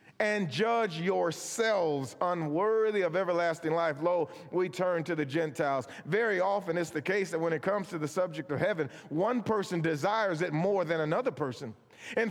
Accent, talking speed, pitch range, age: American, 175 wpm, 150-220 Hz, 40-59